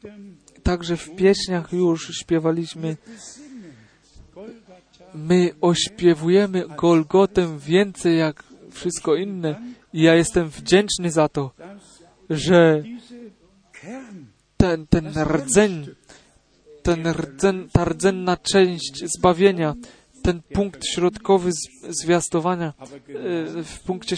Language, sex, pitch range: Polish, male, 160-185 Hz